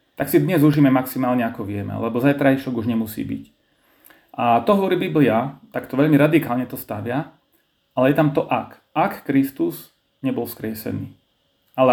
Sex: male